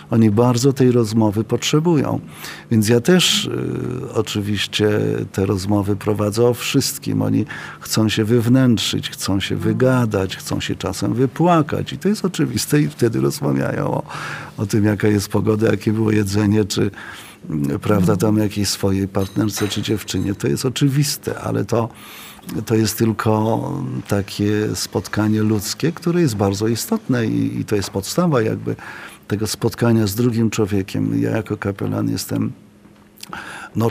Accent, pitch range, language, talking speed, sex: native, 100-130 Hz, Polish, 140 wpm, male